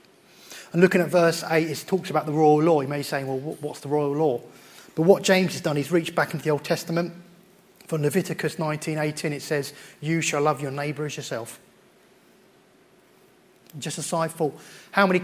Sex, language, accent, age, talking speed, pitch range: male, English, British, 30-49, 195 wpm, 145-175 Hz